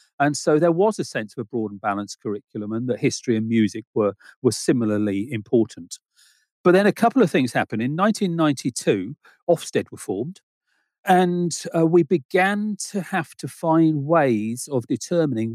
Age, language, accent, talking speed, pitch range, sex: 40-59, English, British, 170 wpm, 120-170 Hz, male